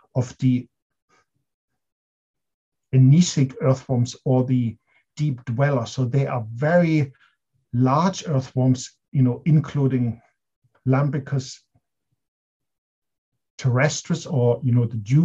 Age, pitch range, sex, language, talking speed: 50-69, 125-145 Hz, male, English, 90 wpm